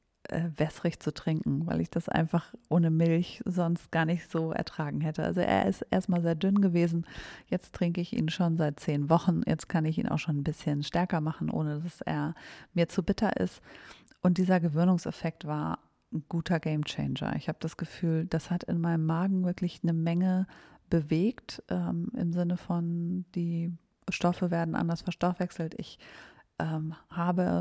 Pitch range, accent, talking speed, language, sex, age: 165-185 Hz, German, 170 wpm, German, female, 40-59